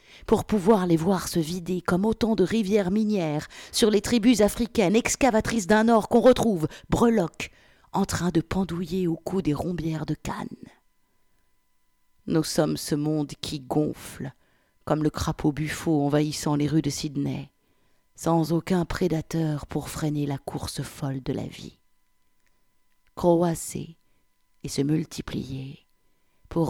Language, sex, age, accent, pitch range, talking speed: French, female, 50-69, French, 135-175 Hz, 140 wpm